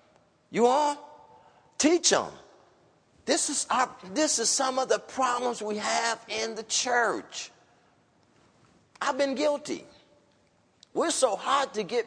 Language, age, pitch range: English, 40-59, 195-275 Hz